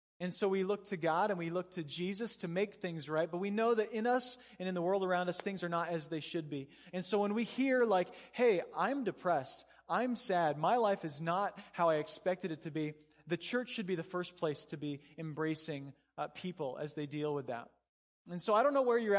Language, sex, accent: English, male, American